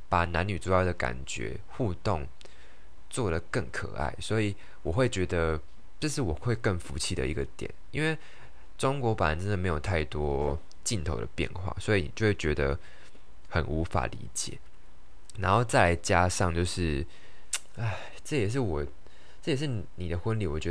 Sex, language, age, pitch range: male, Chinese, 20-39, 80-105 Hz